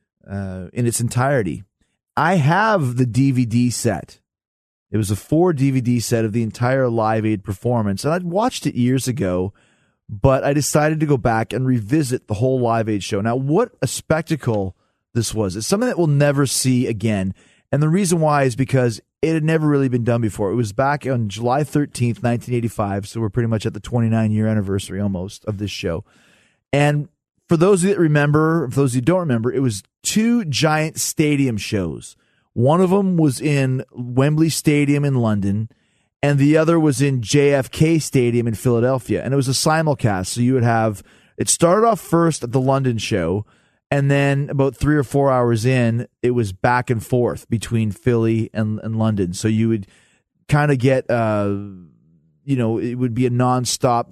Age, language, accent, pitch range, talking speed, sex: 30-49, English, American, 110-145 Hz, 190 wpm, male